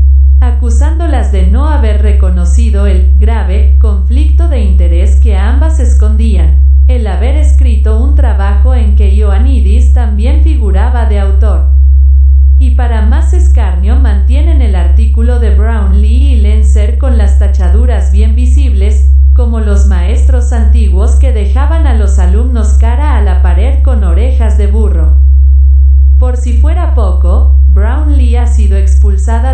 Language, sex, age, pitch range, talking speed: Spanish, female, 40-59, 65-70 Hz, 130 wpm